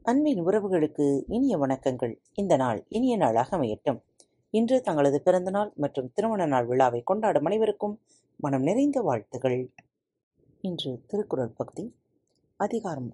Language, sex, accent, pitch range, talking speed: Tamil, female, native, 130-185 Hz, 115 wpm